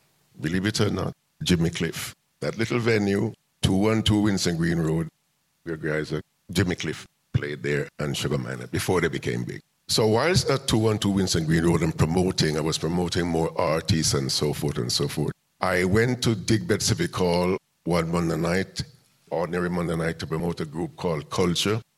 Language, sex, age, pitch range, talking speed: English, male, 50-69, 85-110 Hz, 175 wpm